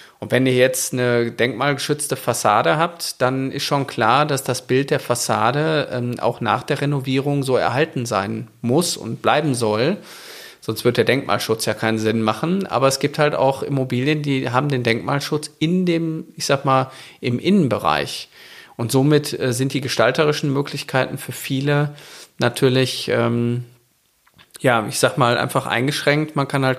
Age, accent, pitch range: 40-59, German, 125-145 Hz